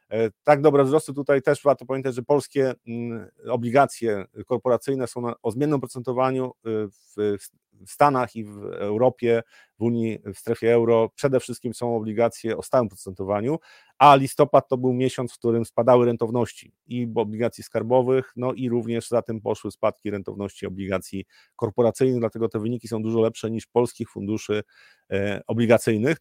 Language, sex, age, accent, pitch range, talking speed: Polish, male, 40-59, native, 110-130 Hz, 145 wpm